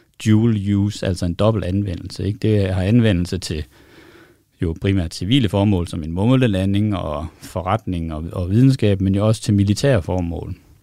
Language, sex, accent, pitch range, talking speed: Danish, male, native, 90-110 Hz, 160 wpm